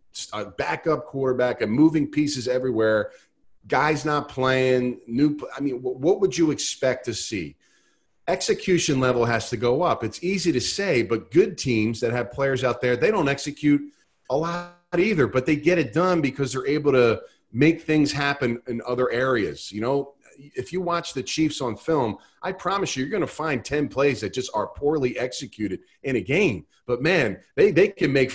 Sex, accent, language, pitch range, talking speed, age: male, American, English, 120-160 Hz, 190 wpm, 40-59